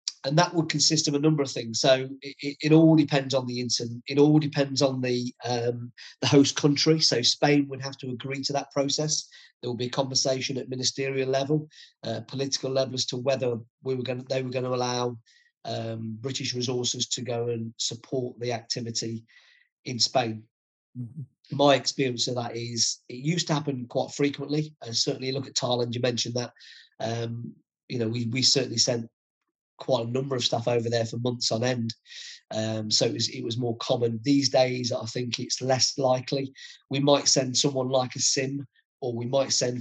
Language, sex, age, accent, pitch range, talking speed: English, male, 40-59, British, 120-135 Hz, 195 wpm